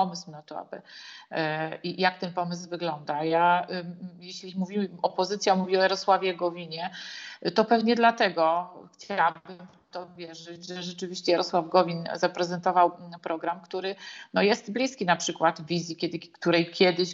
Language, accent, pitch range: Polish, native, 165-190 Hz